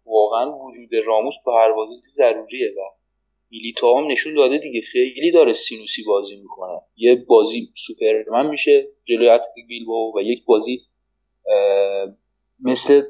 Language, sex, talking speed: Persian, male, 120 wpm